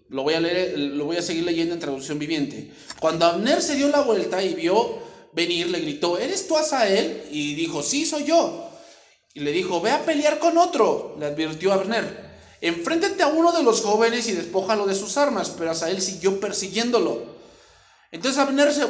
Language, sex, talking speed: English, male, 195 wpm